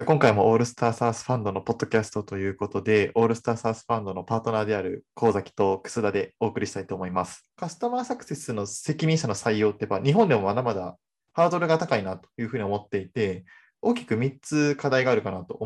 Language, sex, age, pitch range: Japanese, male, 20-39, 110-180 Hz